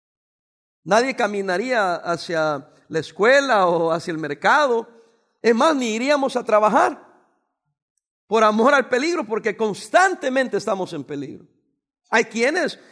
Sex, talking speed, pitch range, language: male, 120 wpm, 195-260 Hz, English